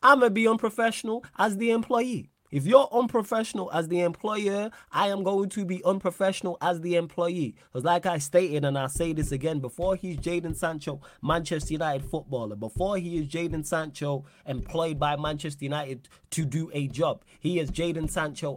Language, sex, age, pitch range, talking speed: English, male, 20-39, 145-190 Hz, 180 wpm